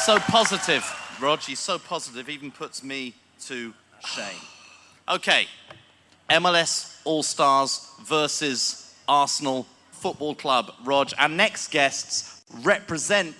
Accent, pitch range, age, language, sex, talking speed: British, 145-210 Hz, 40-59, English, male, 110 wpm